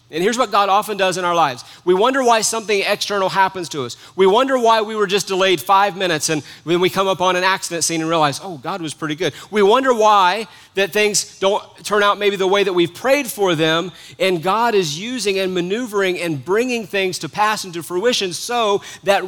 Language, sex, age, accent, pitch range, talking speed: English, male, 40-59, American, 155-215 Hz, 225 wpm